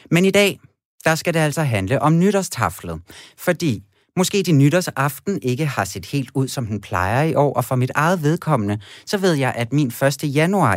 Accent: native